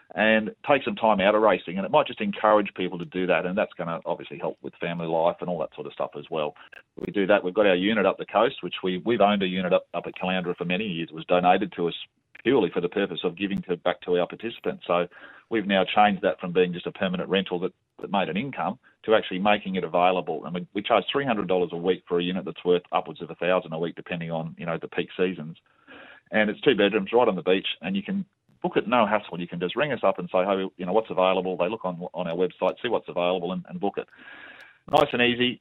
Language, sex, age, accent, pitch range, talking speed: English, male, 40-59, Australian, 90-105 Hz, 275 wpm